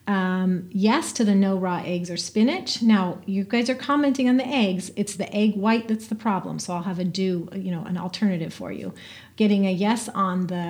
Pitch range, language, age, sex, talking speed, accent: 185-230 Hz, English, 40-59, female, 225 wpm, American